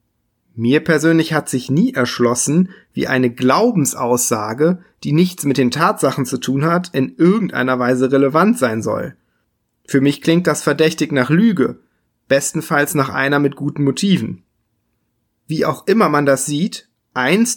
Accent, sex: German, male